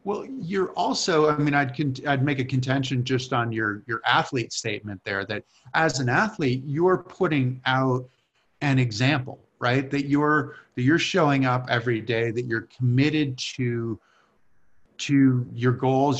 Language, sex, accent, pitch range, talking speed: English, male, American, 120-140 Hz, 160 wpm